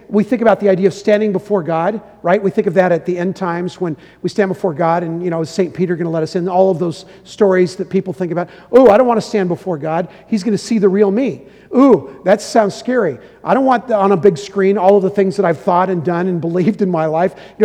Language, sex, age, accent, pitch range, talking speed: English, male, 50-69, American, 180-215 Hz, 285 wpm